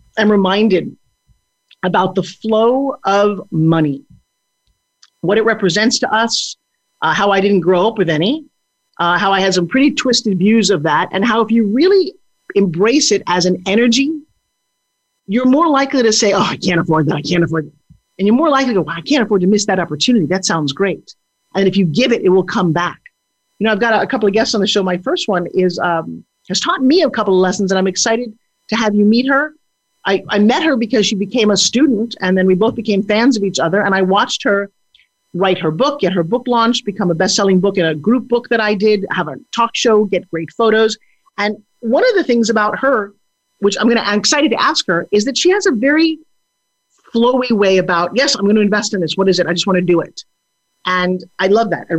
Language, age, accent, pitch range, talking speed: English, 40-59, American, 180-230 Hz, 235 wpm